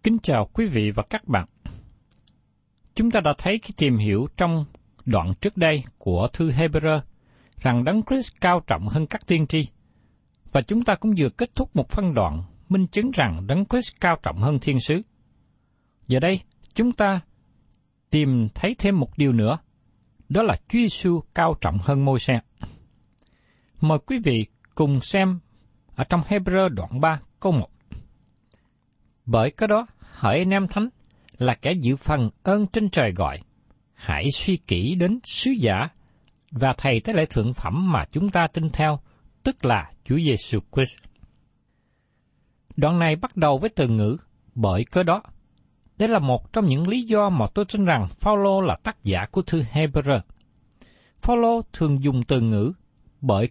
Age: 60-79